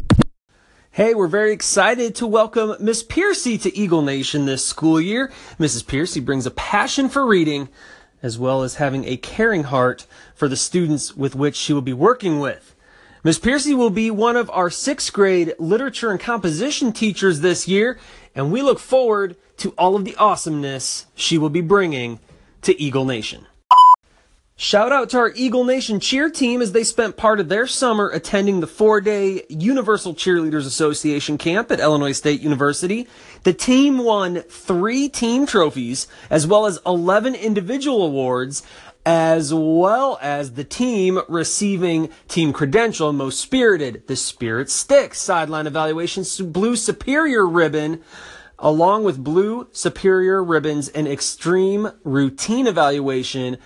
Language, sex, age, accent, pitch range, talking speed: English, male, 30-49, American, 140-215 Hz, 150 wpm